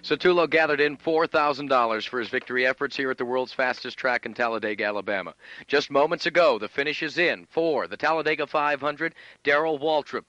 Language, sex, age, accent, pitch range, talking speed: English, male, 50-69, American, 135-160 Hz, 175 wpm